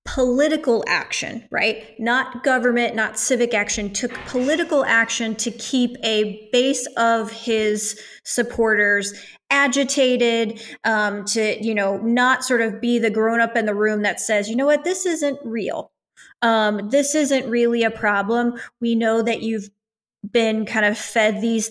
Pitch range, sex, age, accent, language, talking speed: 220-265 Hz, female, 20-39, American, English, 150 wpm